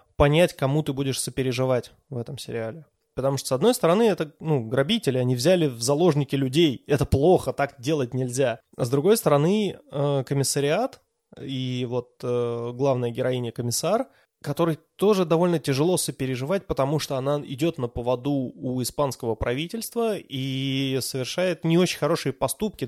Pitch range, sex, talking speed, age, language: 125-160 Hz, male, 145 wpm, 20-39, Russian